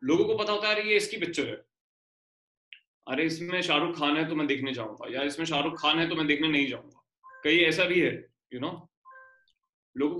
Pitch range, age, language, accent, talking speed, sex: 130-170 Hz, 30-49, Hindi, native, 220 wpm, male